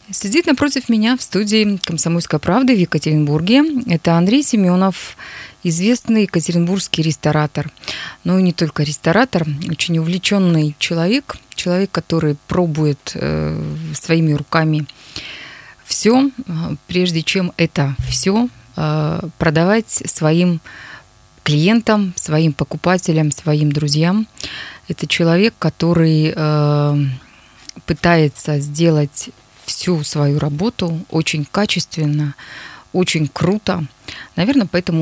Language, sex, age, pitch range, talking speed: Russian, female, 20-39, 150-195 Hz, 100 wpm